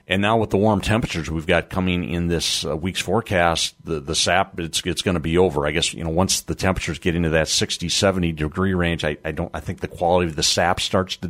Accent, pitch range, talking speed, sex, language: American, 85-105 Hz, 255 wpm, male, English